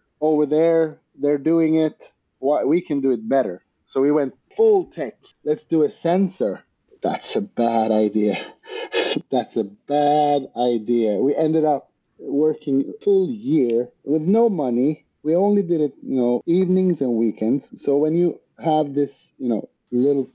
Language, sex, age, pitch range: English, male, 30-49, 125-175 Hz